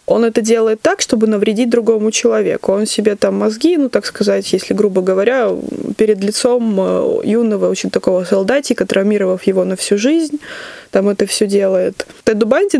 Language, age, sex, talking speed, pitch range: Russian, 20-39, female, 165 wpm, 200-240 Hz